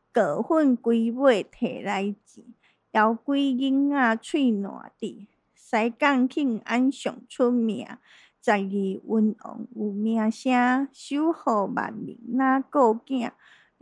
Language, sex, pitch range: Chinese, female, 220-275 Hz